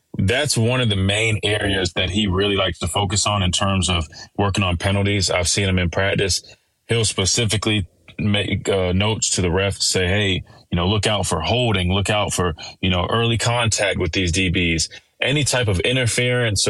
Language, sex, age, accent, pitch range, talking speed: English, male, 20-39, American, 95-115 Hz, 200 wpm